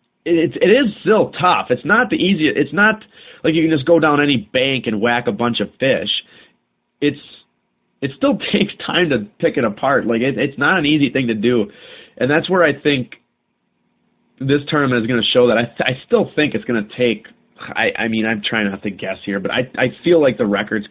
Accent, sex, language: American, male, English